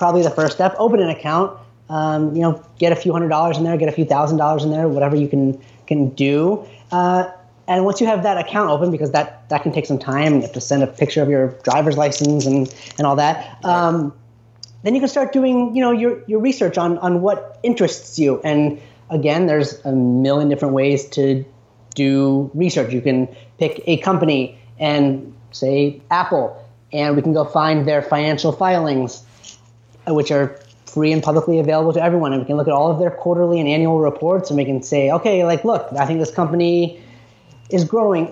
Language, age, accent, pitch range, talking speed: Italian, 30-49, American, 140-180 Hz, 210 wpm